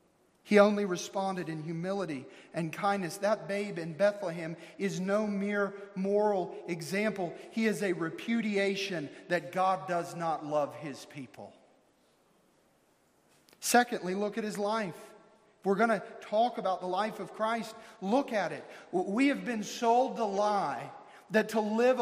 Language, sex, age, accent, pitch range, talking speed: English, male, 40-59, American, 180-220 Hz, 145 wpm